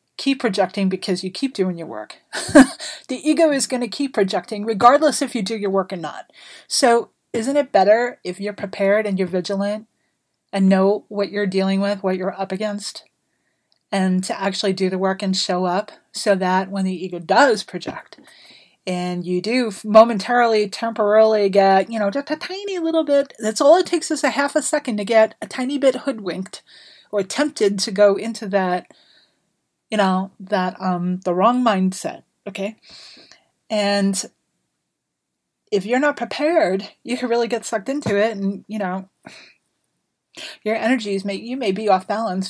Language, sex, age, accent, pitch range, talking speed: English, female, 30-49, American, 195-250 Hz, 175 wpm